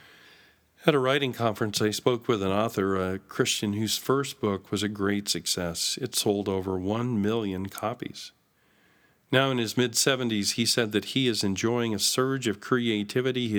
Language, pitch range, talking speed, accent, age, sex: English, 95-115 Hz, 170 wpm, American, 50-69, male